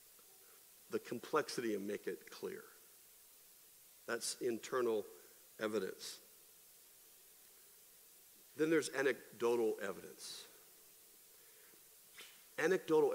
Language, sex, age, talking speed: English, male, 50-69, 65 wpm